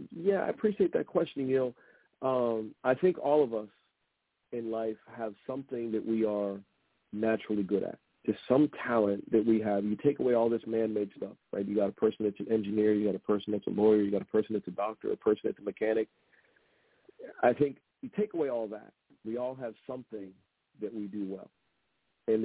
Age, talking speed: 40-59, 210 wpm